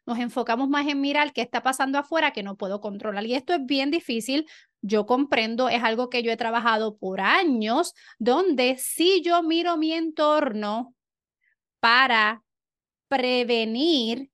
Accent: American